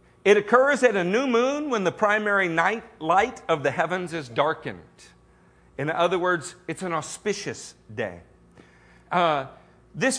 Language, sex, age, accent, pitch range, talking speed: English, male, 50-69, American, 180-245 Hz, 145 wpm